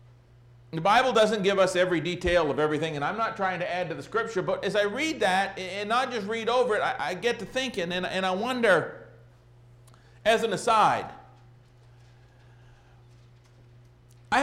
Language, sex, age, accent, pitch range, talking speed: English, male, 50-69, American, 120-200 Hz, 175 wpm